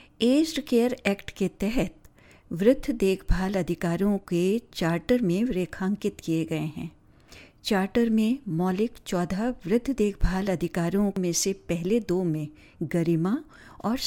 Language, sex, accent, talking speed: Hindi, female, native, 125 wpm